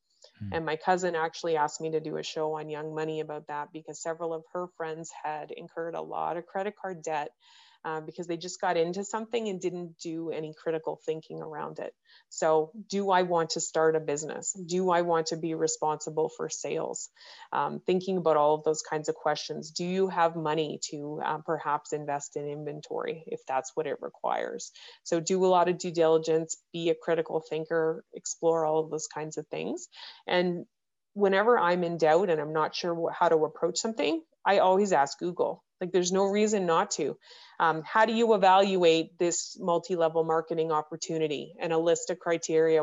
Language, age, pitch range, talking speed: English, 20-39, 155-185 Hz, 195 wpm